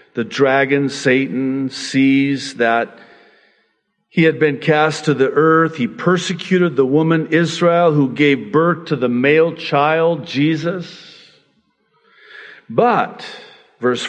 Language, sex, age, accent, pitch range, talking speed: English, male, 50-69, American, 120-155 Hz, 115 wpm